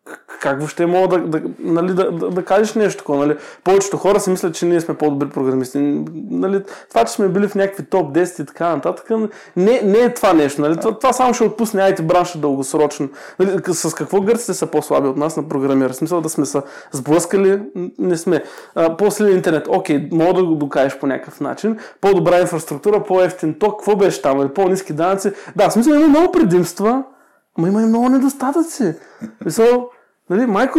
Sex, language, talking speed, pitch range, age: male, Bulgarian, 190 wpm, 165-240 Hz, 20-39